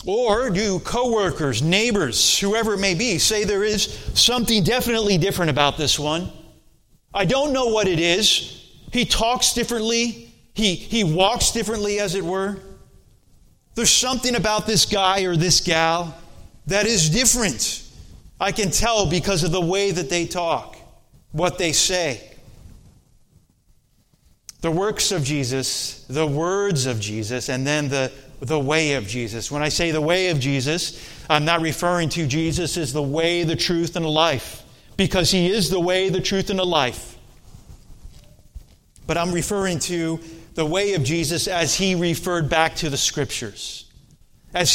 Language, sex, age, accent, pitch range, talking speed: English, male, 30-49, American, 150-195 Hz, 160 wpm